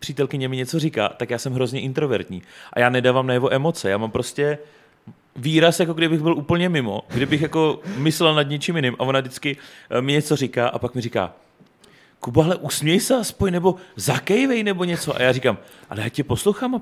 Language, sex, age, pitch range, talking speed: Czech, male, 30-49, 120-150 Hz, 200 wpm